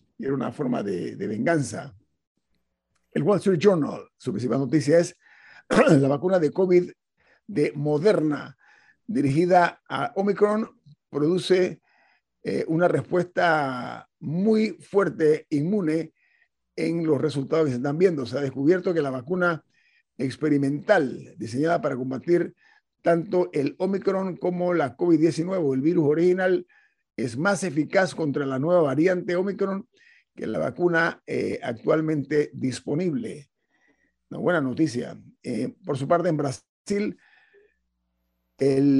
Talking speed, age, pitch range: 125 wpm, 50-69, 140-180 Hz